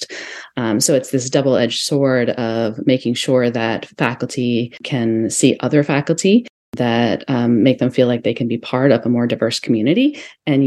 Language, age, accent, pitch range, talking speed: English, 30-49, American, 115-135 Hz, 175 wpm